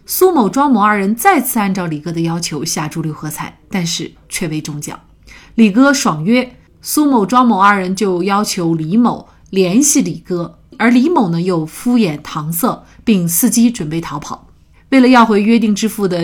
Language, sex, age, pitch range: Chinese, female, 30-49, 175-250 Hz